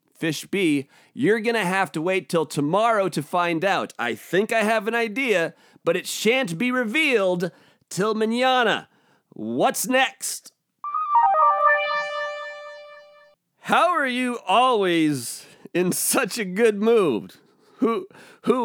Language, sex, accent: English, male, American